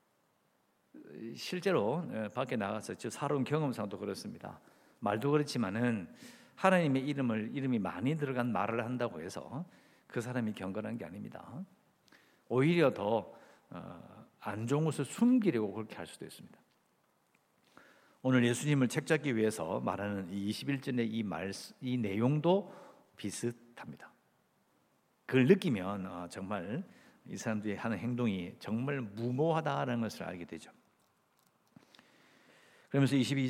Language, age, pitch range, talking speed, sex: English, 50-69, 110-160 Hz, 95 wpm, male